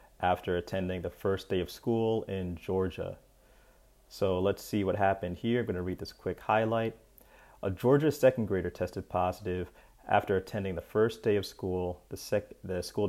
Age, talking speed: 30-49, 175 wpm